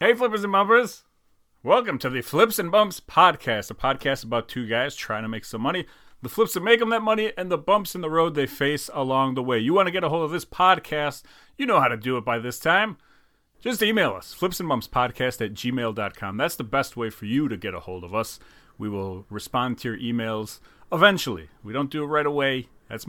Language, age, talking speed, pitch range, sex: English, 40-59, 230 wpm, 110-150 Hz, male